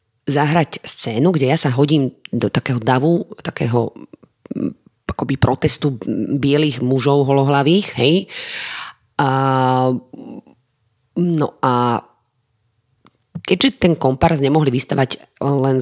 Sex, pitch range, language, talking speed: female, 125-150 Hz, Slovak, 90 wpm